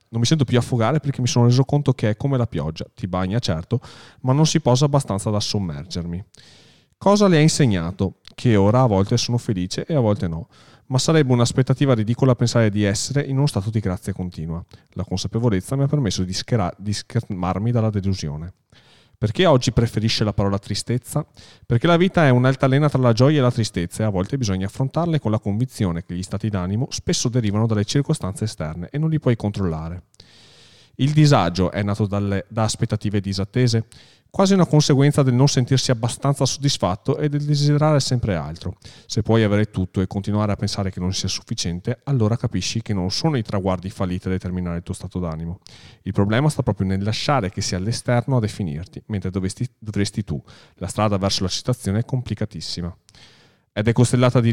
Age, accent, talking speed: 30-49, native, 190 wpm